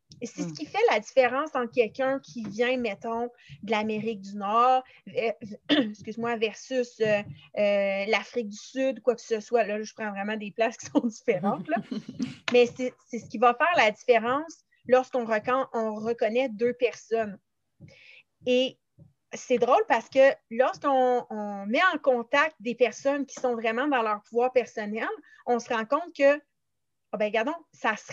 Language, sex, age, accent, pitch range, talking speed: French, female, 30-49, Canadian, 220-260 Hz, 180 wpm